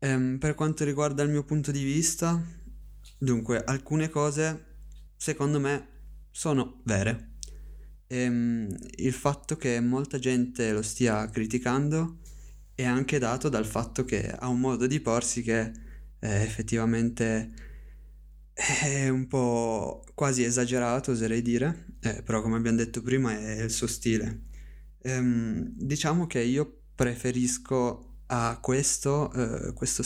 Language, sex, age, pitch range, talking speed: Italian, male, 20-39, 110-130 Hz, 120 wpm